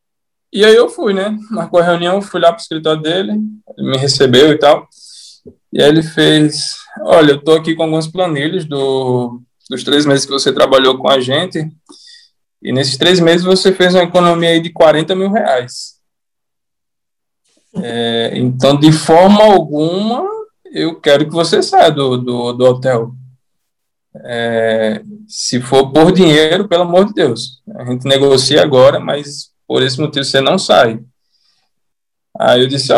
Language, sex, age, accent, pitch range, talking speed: Portuguese, male, 20-39, Brazilian, 140-180 Hz, 160 wpm